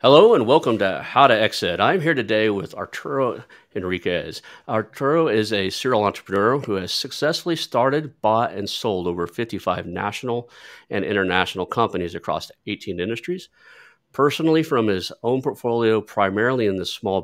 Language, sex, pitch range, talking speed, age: English, male, 95-125 Hz, 150 wpm, 40-59